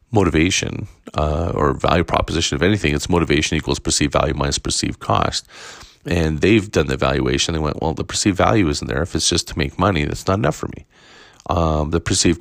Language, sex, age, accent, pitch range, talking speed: English, male, 40-59, American, 75-95 Hz, 205 wpm